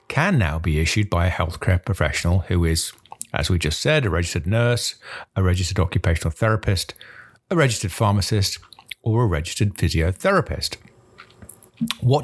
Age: 50-69